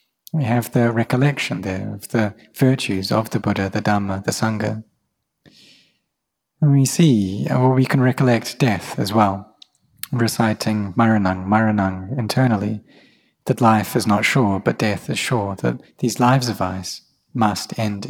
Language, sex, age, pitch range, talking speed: English, male, 30-49, 105-125 Hz, 150 wpm